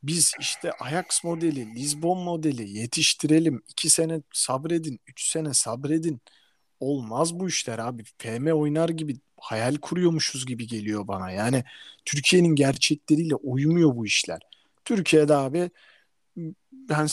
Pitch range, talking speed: 130-160 Hz, 120 wpm